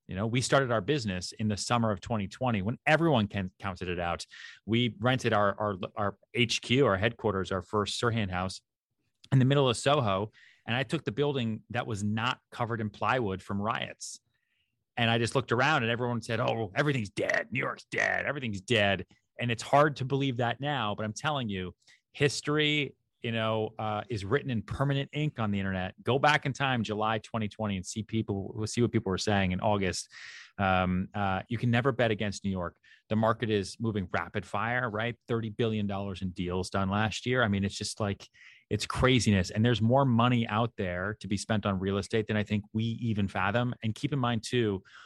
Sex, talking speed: male, 205 wpm